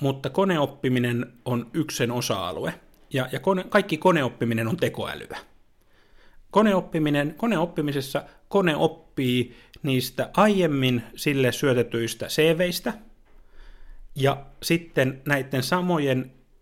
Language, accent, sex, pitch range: Finnish, native, male, 120-155 Hz